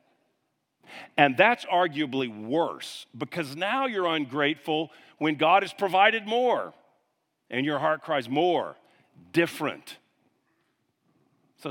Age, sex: 50-69, male